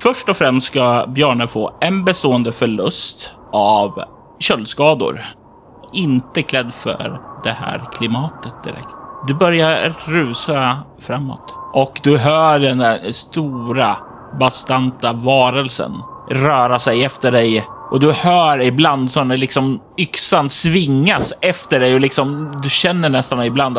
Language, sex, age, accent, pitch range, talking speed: Swedish, male, 30-49, native, 130-160 Hz, 125 wpm